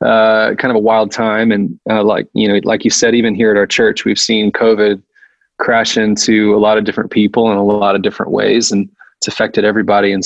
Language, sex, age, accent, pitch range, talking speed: English, male, 20-39, American, 105-115 Hz, 235 wpm